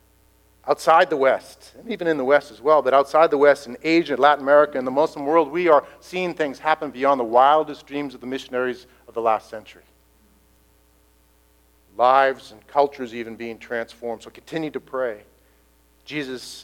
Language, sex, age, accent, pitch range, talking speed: English, male, 50-69, American, 115-170 Hz, 175 wpm